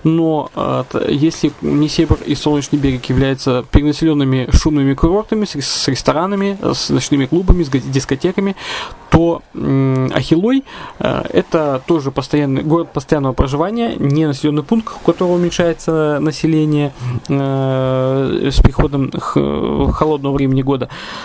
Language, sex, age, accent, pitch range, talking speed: Russian, male, 20-39, native, 135-165 Hz, 105 wpm